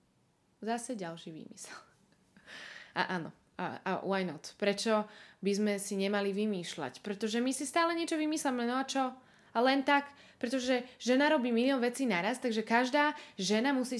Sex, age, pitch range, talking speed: female, 20-39, 185-240 Hz, 160 wpm